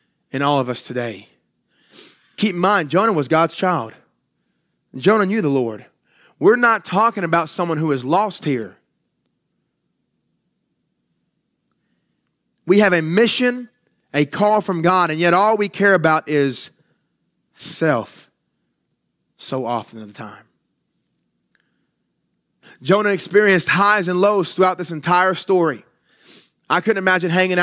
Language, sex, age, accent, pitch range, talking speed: English, male, 30-49, American, 165-210 Hz, 130 wpm